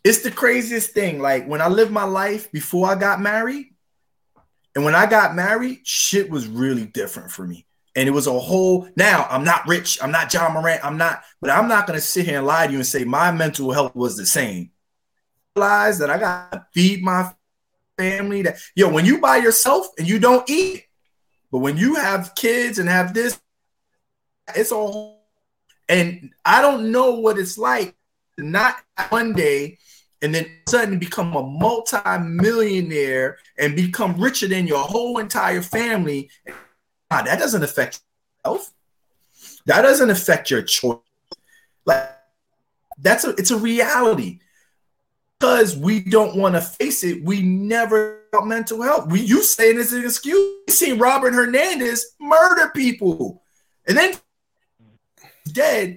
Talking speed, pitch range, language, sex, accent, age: 165 wpm, 165-235 Hz, English, male, American, 30-49